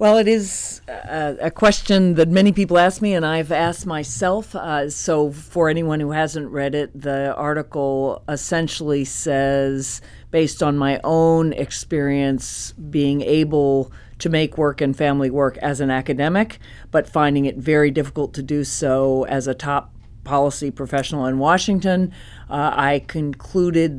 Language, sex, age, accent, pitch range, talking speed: English, female, 40-59, American, 135-160 Hz, 150 wpm